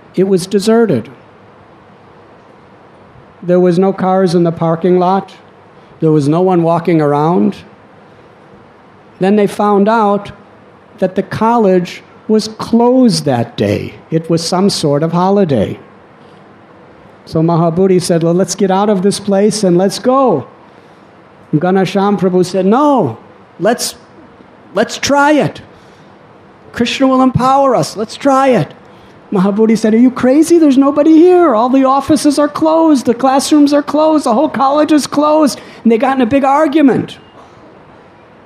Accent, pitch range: American, 155-235 Hz